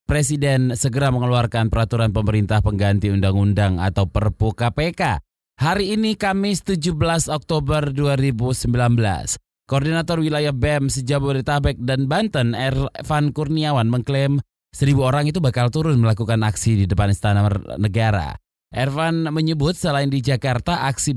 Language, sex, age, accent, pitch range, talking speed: Indonesian, male, 20-39, native, 110-145 Hz, 120 wpm